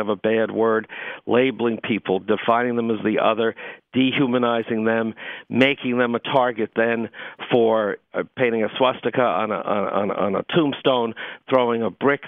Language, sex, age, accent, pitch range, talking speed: English, male, 50-69, American, 110-130 Hz, 160 wpm